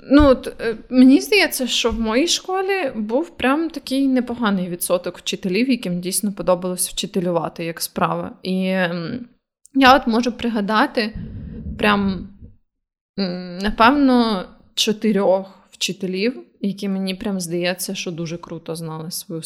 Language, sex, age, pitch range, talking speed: Ukrainian, female, 20-39, 190-240 Hz, 115 wpm